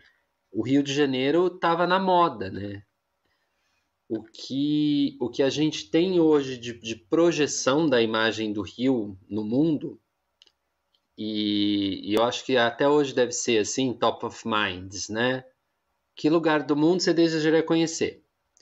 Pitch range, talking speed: 110-160 Hz, 150 wpm